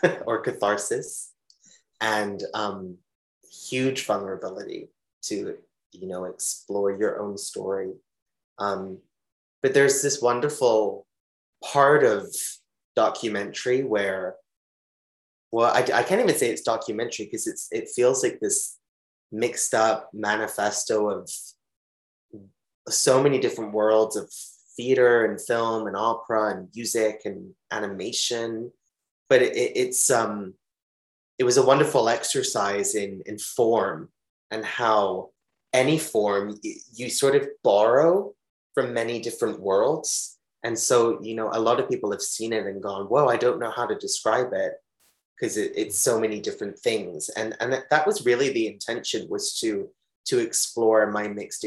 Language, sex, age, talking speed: English, male, 20-39, 140 wpm